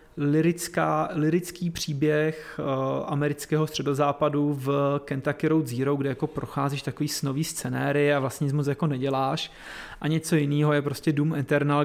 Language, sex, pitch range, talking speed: Czech, male, 145-180 Hz, 145 wpm